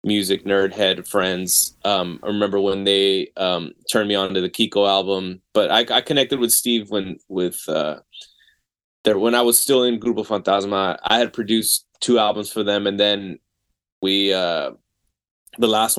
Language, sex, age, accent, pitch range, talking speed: English, male, 20-39, American, 95-105 Hz, 175 wpm